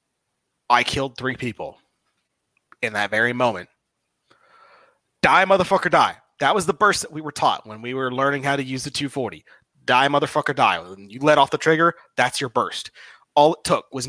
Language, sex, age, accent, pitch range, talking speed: English, male, 30-49, American, 125-180 Hz, 190 wpm